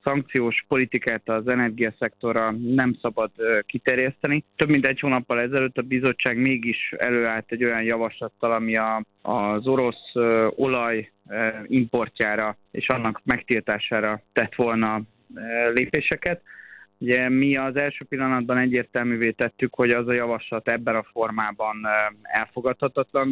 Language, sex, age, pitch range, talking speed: Hungarian, male, 20-39, 110-125 Hz, 115 wpm